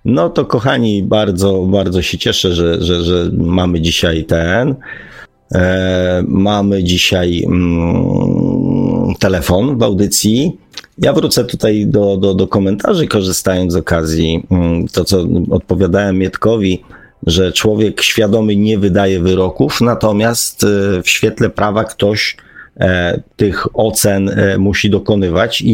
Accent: native